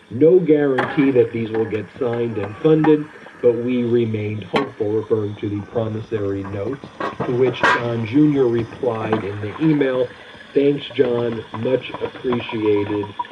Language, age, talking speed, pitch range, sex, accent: English, 40-59, 135 wpm, 110-160 Hz, male, American